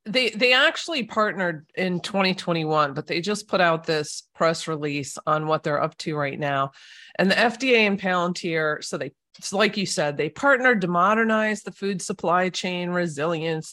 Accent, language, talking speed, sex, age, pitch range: American, English, 175 wpm, female, 40-59, 155-200 Hz